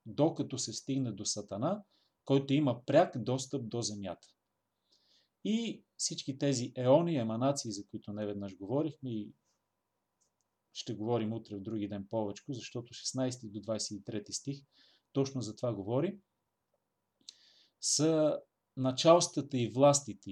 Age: 40-59